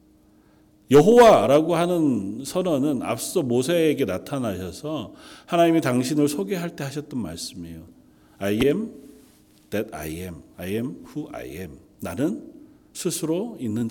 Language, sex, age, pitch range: Korean, male, 40-59, 105-140 Hz